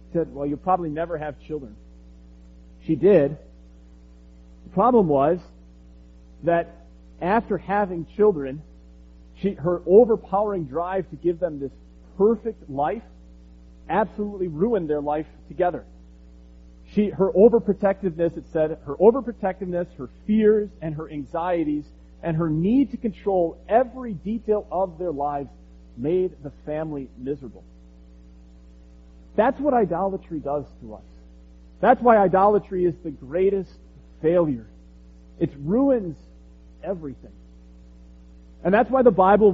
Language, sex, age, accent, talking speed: English, male, 40-59, American, 120 wpm